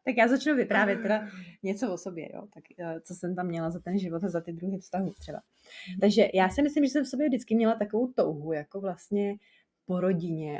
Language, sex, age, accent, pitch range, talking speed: Czech, female, 30-49, native, 170-215 Hz, 220 wpm